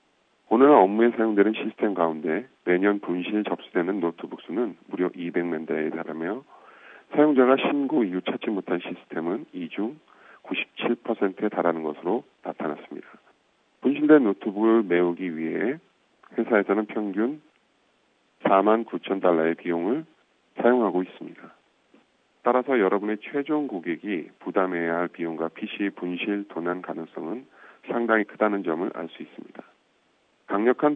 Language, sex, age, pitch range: Korean, male, 40-59, 90-120 Hz